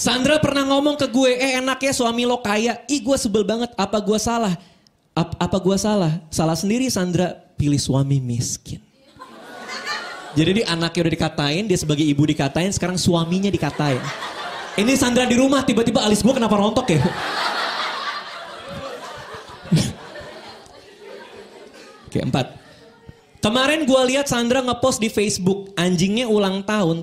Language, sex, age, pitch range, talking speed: Indonesian, male, 20-39, 165-255 Hz, 140 wpm